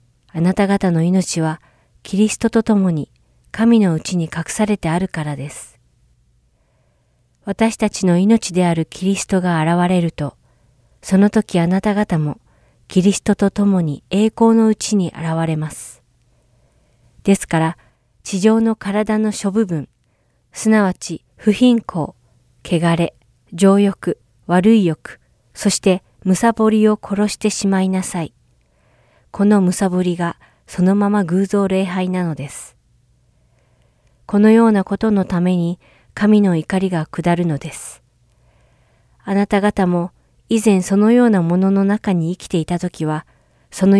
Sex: female